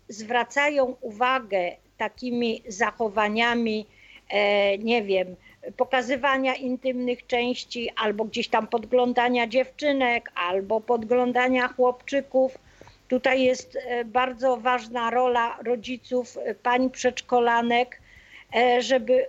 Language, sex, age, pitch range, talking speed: Polish, female, 40-59, 210-250 Hz, 80 wpm